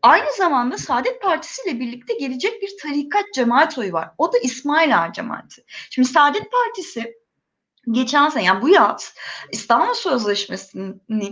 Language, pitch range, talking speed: German, 225-350 Hz, 135 wpm